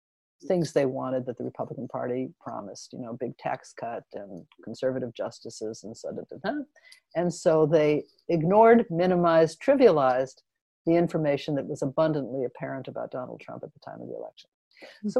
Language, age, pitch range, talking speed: English, 60-79, 150-230 Hz, 170 wpm